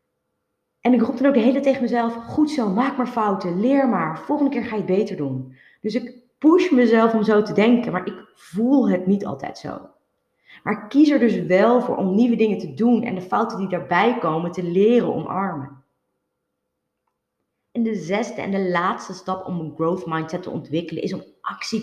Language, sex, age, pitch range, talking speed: Dutch, female, 30-49, 180-250 Hz, 205 wpm